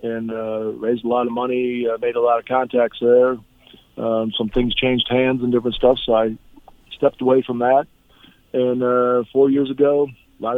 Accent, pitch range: American, 120-135 Hz